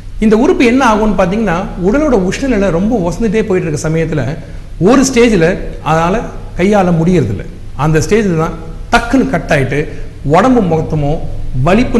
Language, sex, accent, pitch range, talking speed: Tamil, male, native, 150-215 Hz, 130 wpm